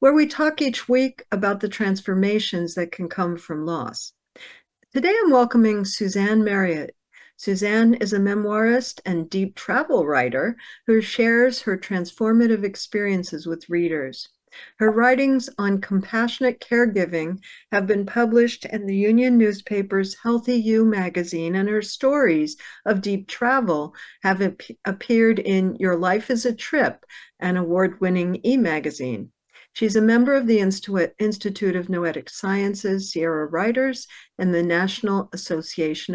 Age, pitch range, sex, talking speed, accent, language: 60-79, 175-225 Hz, female, 135 wpm, American, English